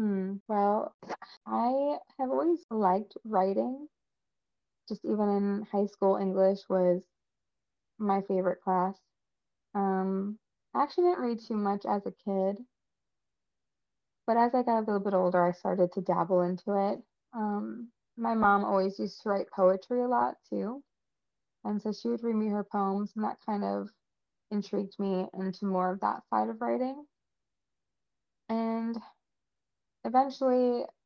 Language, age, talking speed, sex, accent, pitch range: English, 20-39, 145 wpm, female, American, 190-230 Hz